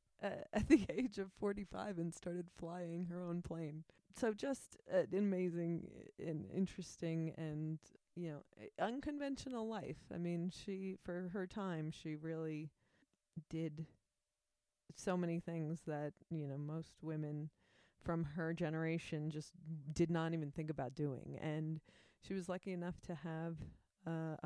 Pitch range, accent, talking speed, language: 155-190 Hz, American, 145 wpm, English